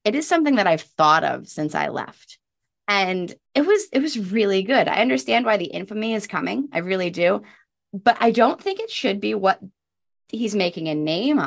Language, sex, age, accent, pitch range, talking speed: English, female, 20-39, American, 155-225 Hz, 205 wpm